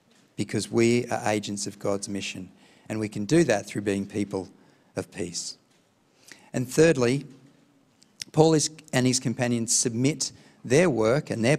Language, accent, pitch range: English, Australian, 105-130 Hz